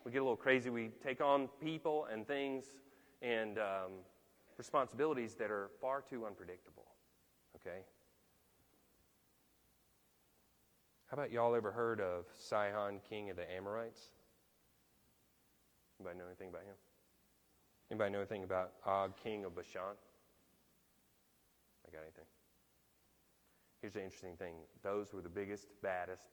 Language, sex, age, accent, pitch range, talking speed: English, male, 30-49, American, 90-115 Hz, 130 wpm